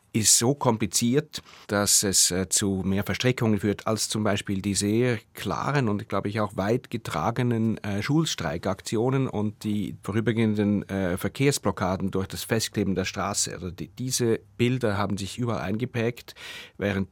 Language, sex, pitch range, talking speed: German, male, 100-130 Hz, 150 wpm